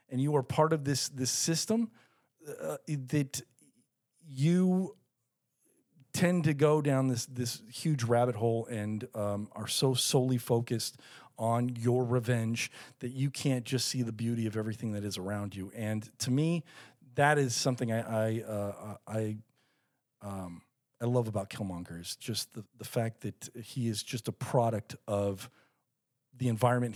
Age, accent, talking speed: 40-59, American, 160 wpm